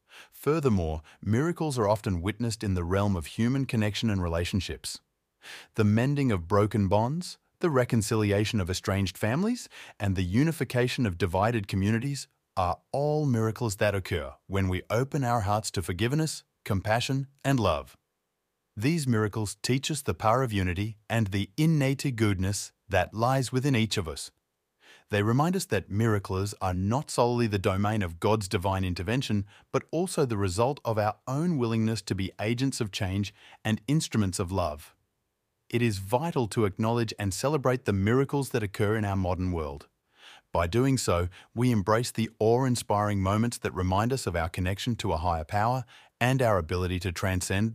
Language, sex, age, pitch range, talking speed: English, male, 30-49, 100-125 Hz, 165 wpm